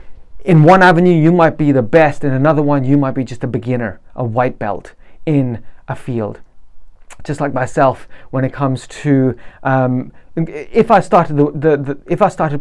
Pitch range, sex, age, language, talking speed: 130-170 Hz, male, 30-49, English, 190 wpm